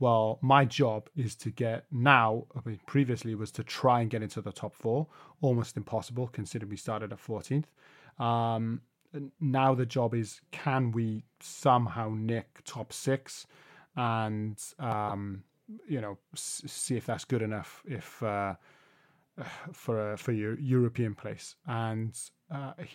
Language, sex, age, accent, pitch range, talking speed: English, male, 30-49, British, 110-140 Hz, 150 wpm